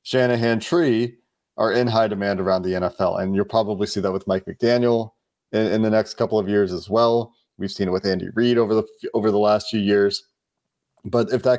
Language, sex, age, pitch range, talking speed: English, male, 30-49, 95-115 Hz, 215 wpm